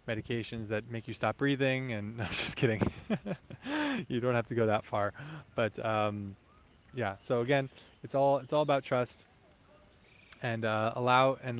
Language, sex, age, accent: English, male, 20-39, American